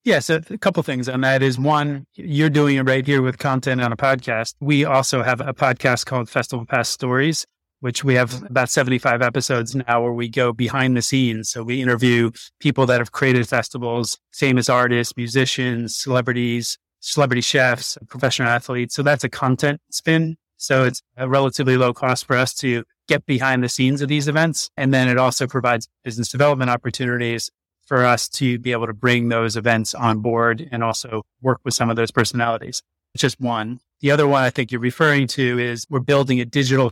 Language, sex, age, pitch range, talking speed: English, male, 30-49, 120-135 Hz, 195 wpm